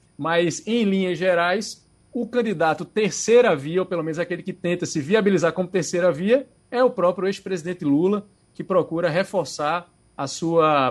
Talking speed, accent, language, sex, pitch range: 160 wpm, Brazilian, Portuguese, male, 150-185 Hz